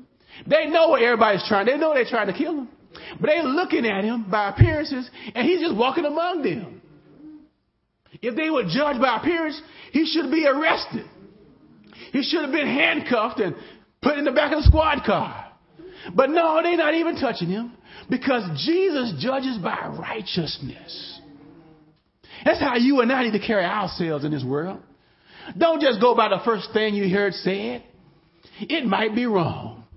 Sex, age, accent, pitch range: male, 40-59, American, 200-300 Hz